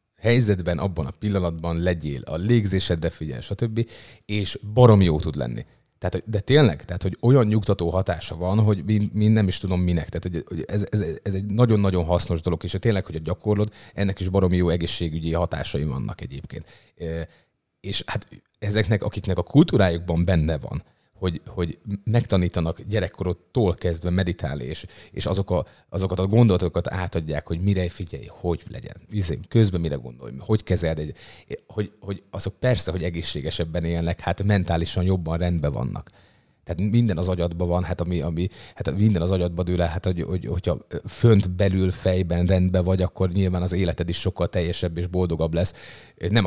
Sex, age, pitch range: male, 30-49, 85-105 Hz